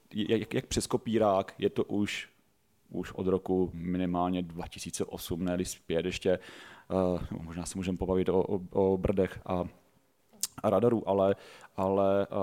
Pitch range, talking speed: 100-115 Hz, 130 wpm